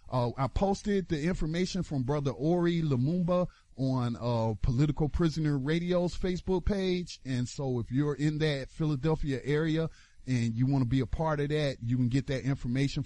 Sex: male